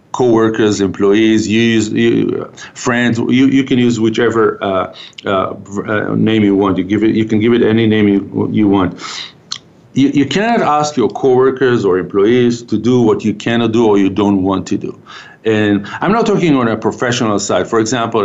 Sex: male